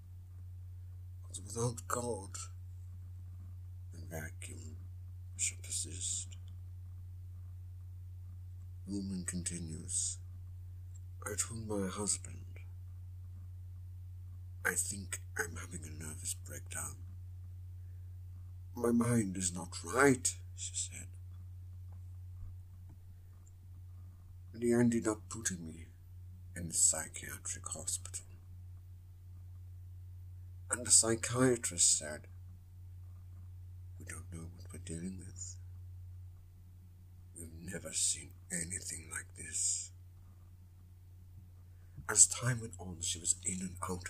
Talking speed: 85 wpm